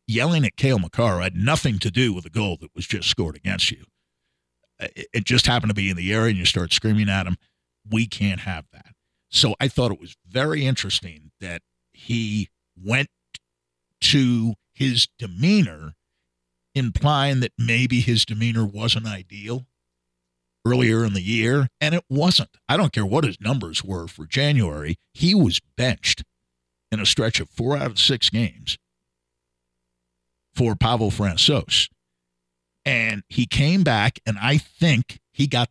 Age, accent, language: 50-69, American, English